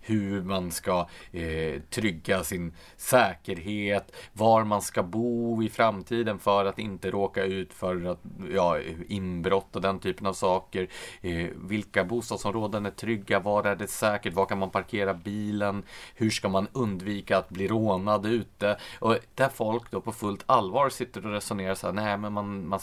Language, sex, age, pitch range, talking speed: Swedish, male, 30-49, 90-110 Hz, 170 wpm